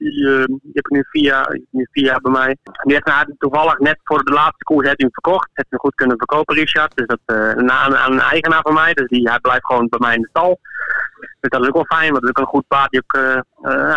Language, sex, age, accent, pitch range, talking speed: Dutch, male, 20-39, Dutch, 120-145 Hz, 270 wpm